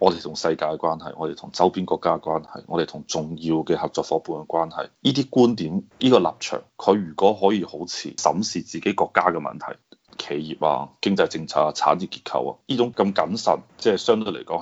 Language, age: Chinese, 30-49